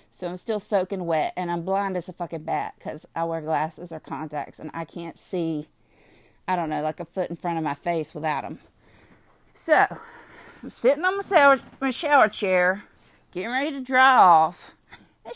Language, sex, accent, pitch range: English, female, American, 170-275 Hz